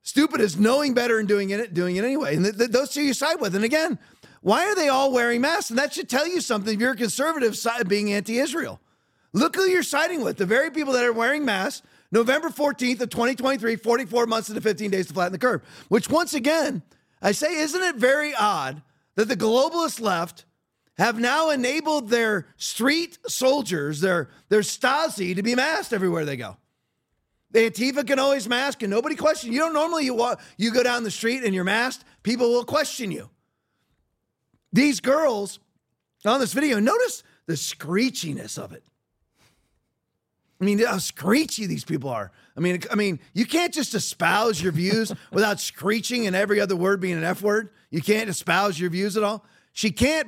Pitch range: 200-275 Hz